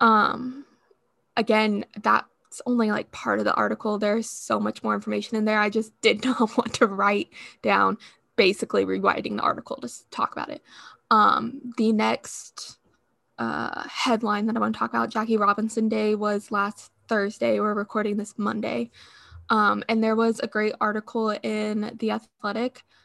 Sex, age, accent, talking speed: female, 20-39, American, 165 wpm